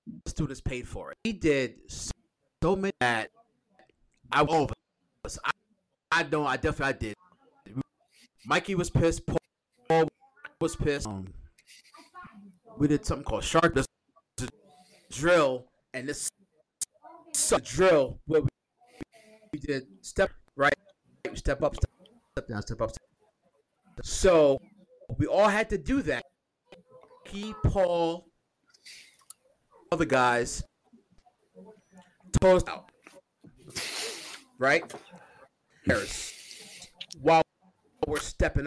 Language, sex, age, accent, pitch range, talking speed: English, male, 30-49, American, 140-200 Hz, 105 wpm